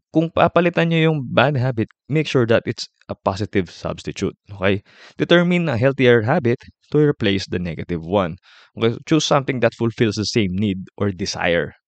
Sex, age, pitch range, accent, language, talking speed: male, 20-39, 95-125 Hz, native, Filipino, 170 wpm